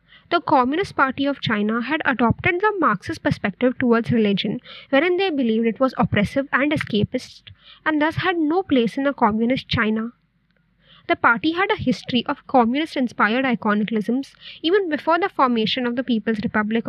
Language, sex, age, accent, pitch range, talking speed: English, female, 20-39, Indian, 225-310 Hz, 160 wpm